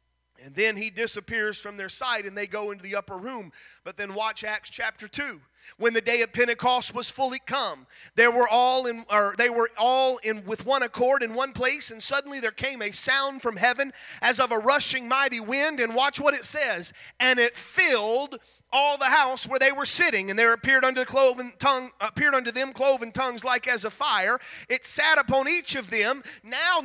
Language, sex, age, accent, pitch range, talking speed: English, male, 30-49, American, 220-275 Hz, 215 wpm